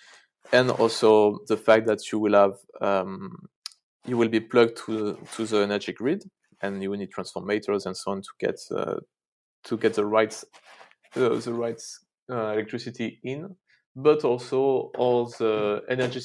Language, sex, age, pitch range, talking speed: English, male, 20-39, 105-125 Hz, 165 wpm